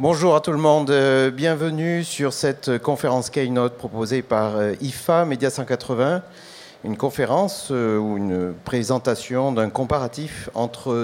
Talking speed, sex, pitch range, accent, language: 125 wpm, male, 120-145 Hz, French, French